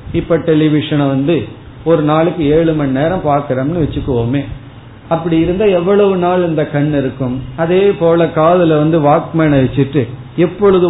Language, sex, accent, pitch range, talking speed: Tamil, male, native, 135-175 Hz, 130 wpm